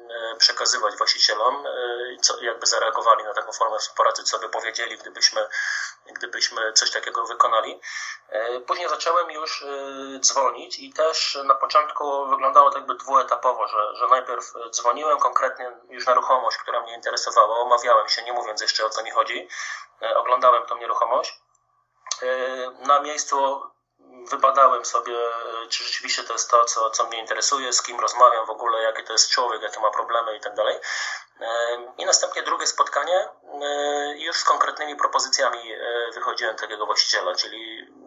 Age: 30-49